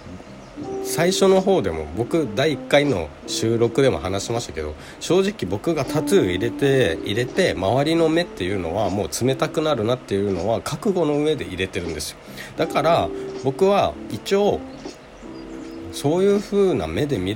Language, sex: Japanese, male